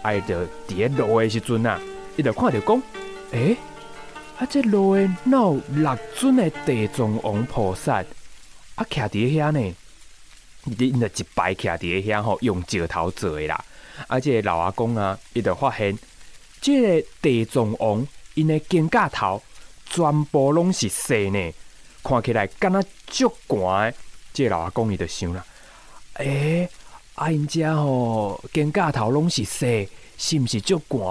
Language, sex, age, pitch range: Chinese, male, 20-39, 105-155 Hz